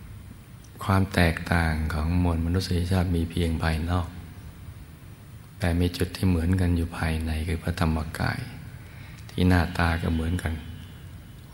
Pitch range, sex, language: 85-95 Hz, male, Thai